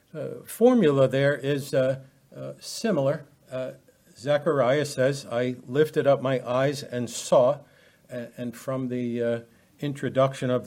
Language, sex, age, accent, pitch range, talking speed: English, male, 60-79, American, 120-145 Hz, 130 wpm